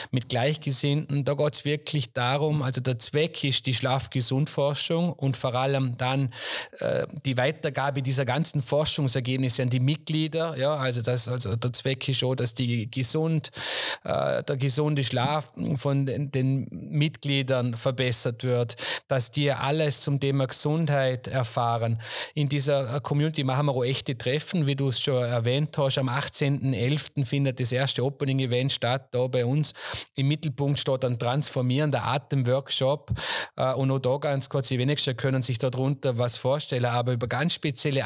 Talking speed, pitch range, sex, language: 155 wpm, 125-145 Hz, male, German